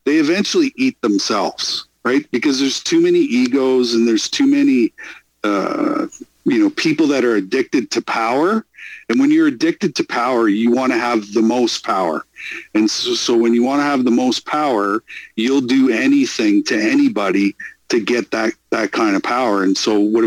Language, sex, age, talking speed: English, male, 50-69, 185 wpm